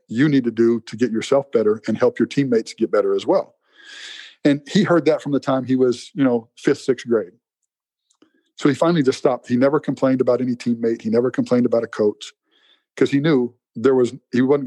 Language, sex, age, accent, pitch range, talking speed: English, male, 50-69, American, 120-150 Hz, 220 wpm